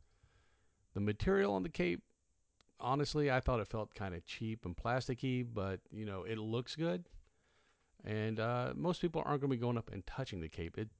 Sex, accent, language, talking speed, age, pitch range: male, American, English, 195 wpm, 40-59, 90-110 Hz